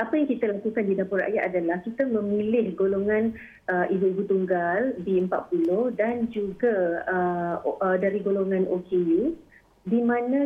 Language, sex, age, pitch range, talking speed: Malay, female, 30-49, 185-230 Hz, 140 wpm